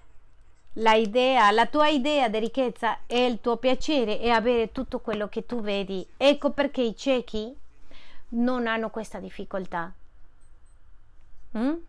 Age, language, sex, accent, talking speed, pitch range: 30-49, Spanish, female, American, 135 wpm, 190-255 Hz